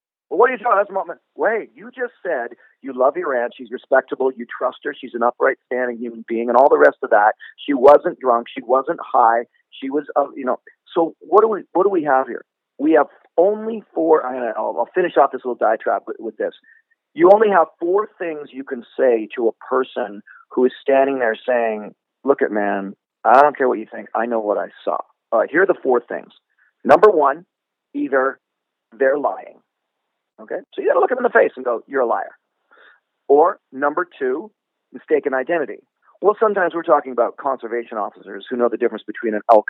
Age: 40-59